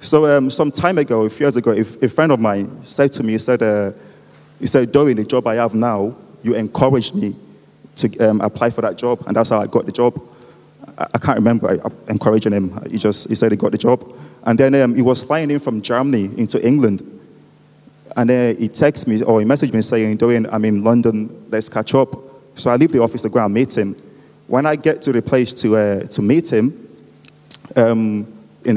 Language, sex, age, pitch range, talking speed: English, male, 30-49, 110-130 Hz, 225 wpm